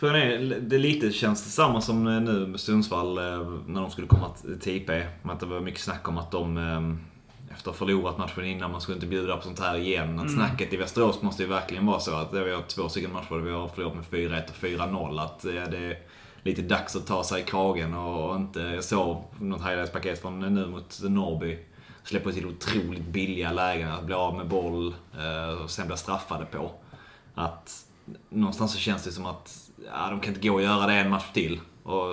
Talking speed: 210 wpm